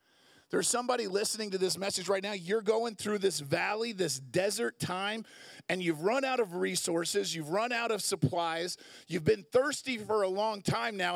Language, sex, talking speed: English, male, 190 wpm